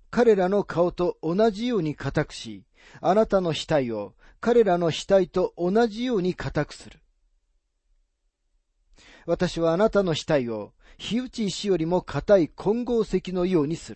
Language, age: Japanese, 40-59